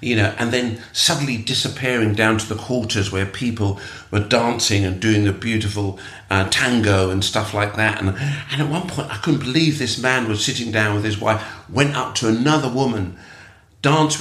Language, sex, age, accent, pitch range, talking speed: English, male, 50-69, British, 100-130 Hz, 195 wpm